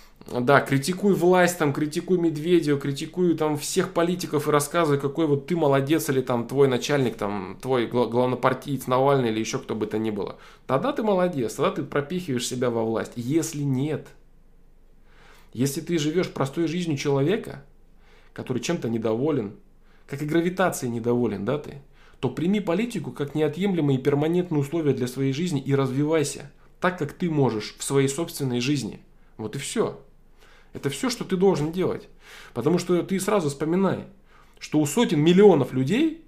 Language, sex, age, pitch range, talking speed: Russian, male, 20-39, 130-170 Hz, 160 wpm